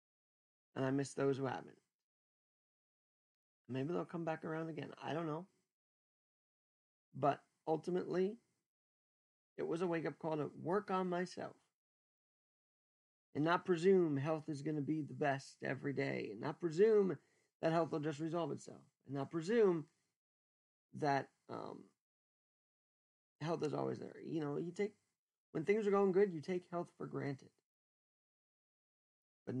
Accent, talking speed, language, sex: American, 145 wpm, English, male